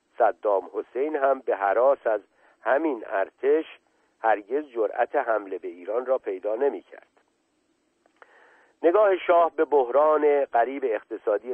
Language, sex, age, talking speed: Persian, male, 50-69, 120 wpm